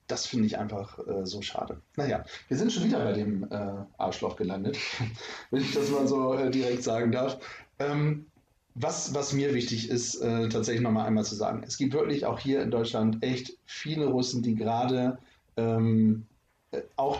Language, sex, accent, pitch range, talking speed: German, male, German, 110-130 Hz, 180 wpm